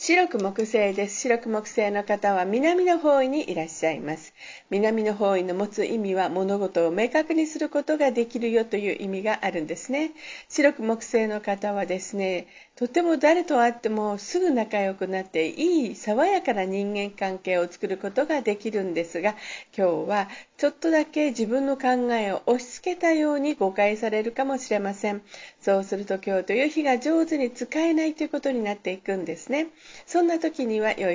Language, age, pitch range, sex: Japanese, 50-69, 195-270 Hz, female